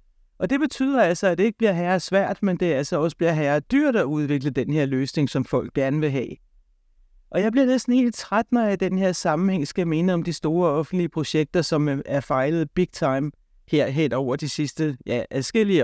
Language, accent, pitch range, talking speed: Danish, native, 140-190 Hz, 215 wpm